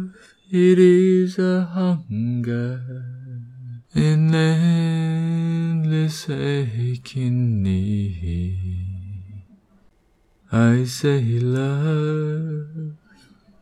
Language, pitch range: Chinese, 125-155 Hz